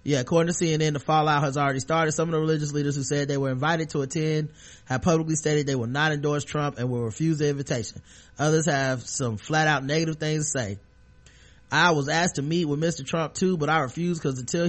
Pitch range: 135-160 Hz